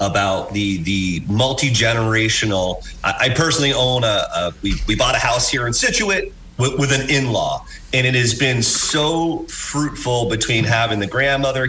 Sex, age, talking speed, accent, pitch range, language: male, 30-49, 175 wpm, American, 105-140 Hz, English